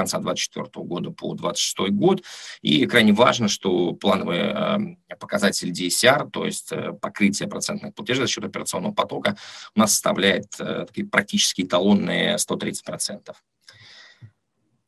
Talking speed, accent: 120 wpm, native